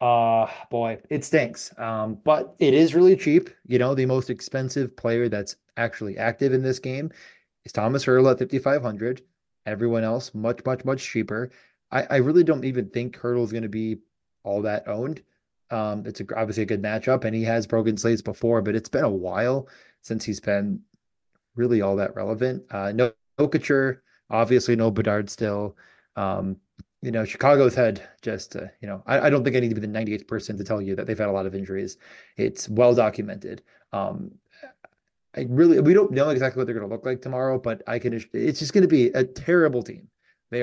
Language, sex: English, male